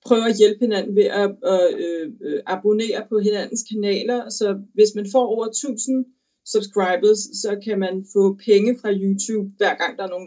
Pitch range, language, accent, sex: 185-220 Hz, Danish, native, female